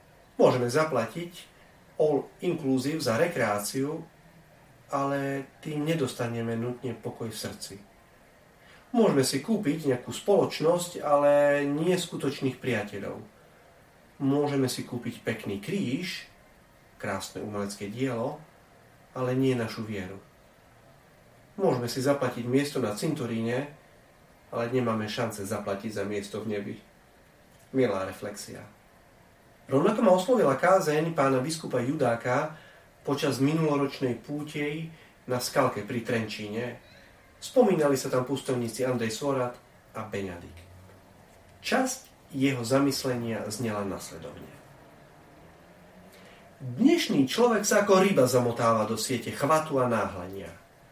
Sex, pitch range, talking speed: male, 110-145 Hz, 105 wpm